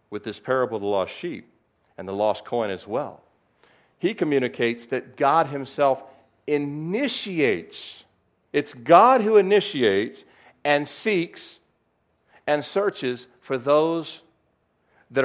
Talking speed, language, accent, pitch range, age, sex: 120 wpm, English, American, 100-150 Hz, 50-69, male